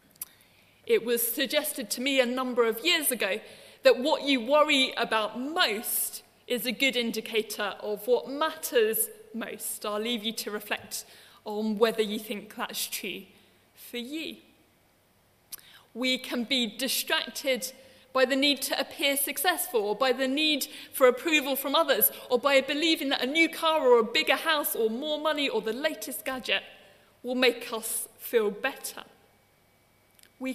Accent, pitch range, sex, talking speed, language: British, 240-305 Hz, female, 155 wpm, English